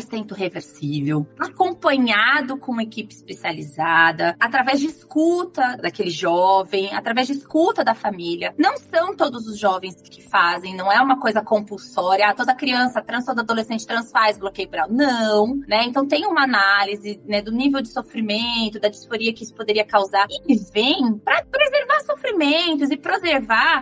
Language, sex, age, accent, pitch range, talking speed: Portuguese, female, 20-39, Brazilian, 215-305 Hz, 160 wpm